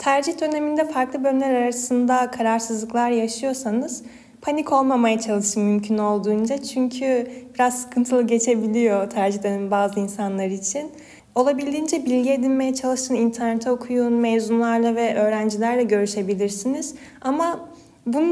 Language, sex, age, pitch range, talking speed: Turkish, female, 10-29, 220-270 Hz, 105 wpm